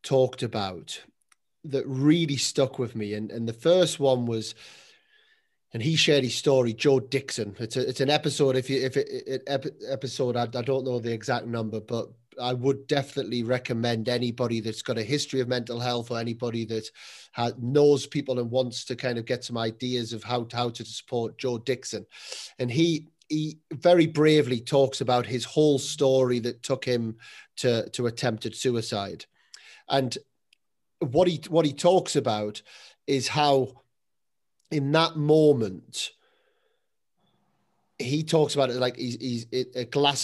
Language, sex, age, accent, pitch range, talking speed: English, male, 30-49, British, 120-145 Hz, 165 wpm